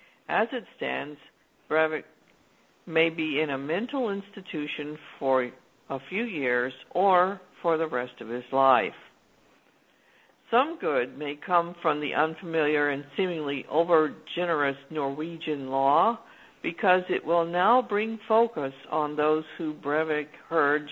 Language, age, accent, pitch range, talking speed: English, 60-79, American, 145-180 Hz, 125 wpm